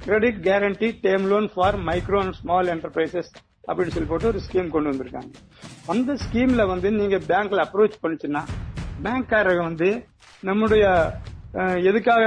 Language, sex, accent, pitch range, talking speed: Tamil, male, native, 175-215 Hz, 130 wpm